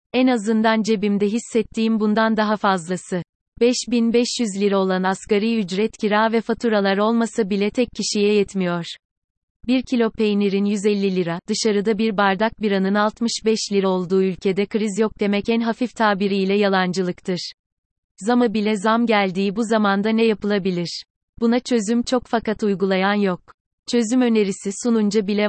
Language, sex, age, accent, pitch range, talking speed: Turkish, female, 30-49, native, 195-225 Hz, 135 wpm